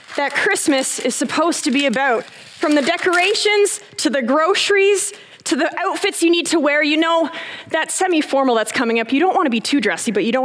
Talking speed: 205 wpm